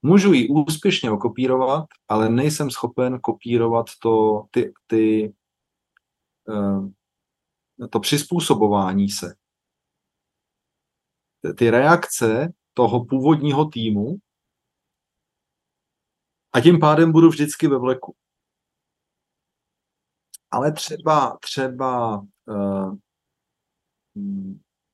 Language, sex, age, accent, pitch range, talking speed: Czech, male, 40-59, native, 110-145 Hz, 75 wpm